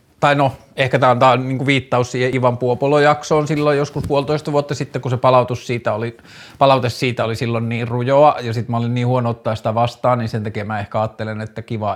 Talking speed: 225 wpm